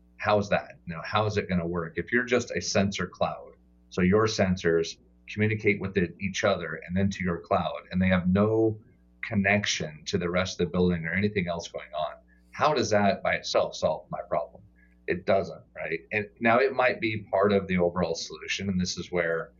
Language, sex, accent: English, male, American